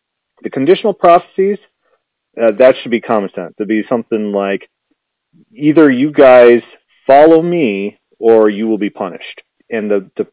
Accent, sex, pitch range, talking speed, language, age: American, male, 105-155 Hz, 155 wpm, English, 40-59